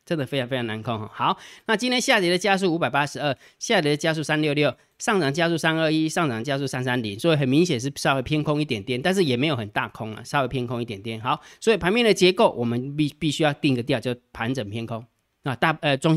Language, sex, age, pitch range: Chinese, male, 20-39, 120-155 Hz